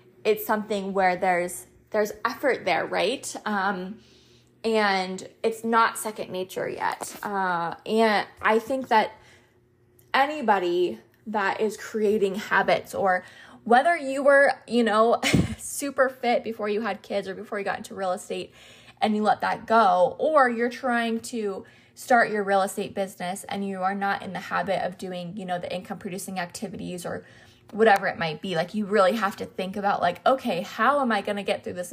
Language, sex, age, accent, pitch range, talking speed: English, female, 20-39, American, 185-225 Hz, 180 wpm